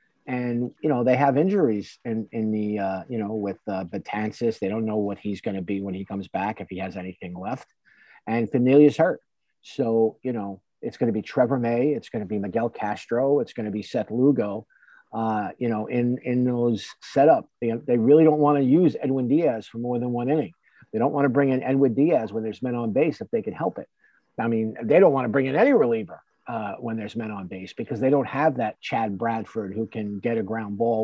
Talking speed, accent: 240 wpm, American